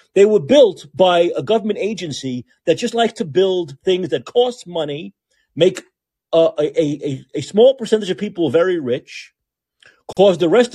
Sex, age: male, 40-59